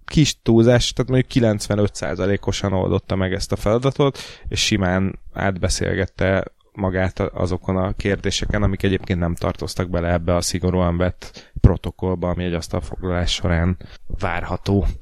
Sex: male